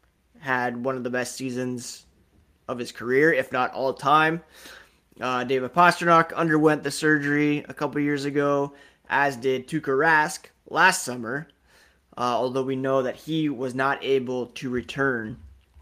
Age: 20-39